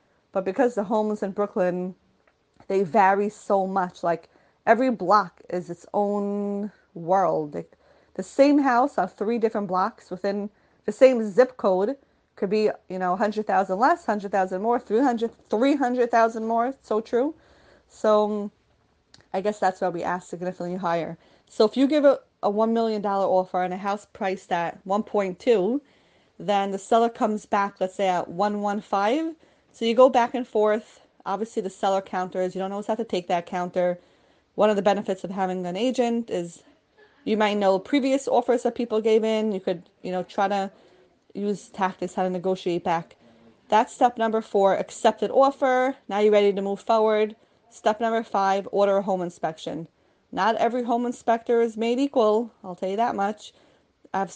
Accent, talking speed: American, 185 wpm